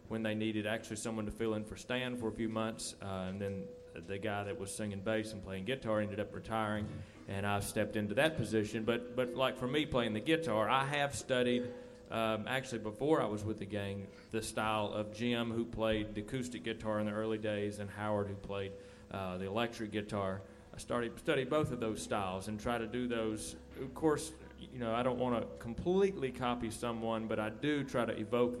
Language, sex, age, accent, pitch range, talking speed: English, male, 40-59, American, 105-125 Hz, 220 wpm